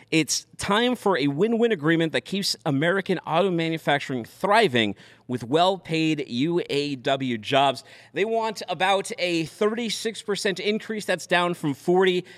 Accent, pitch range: American, 150-210 Hz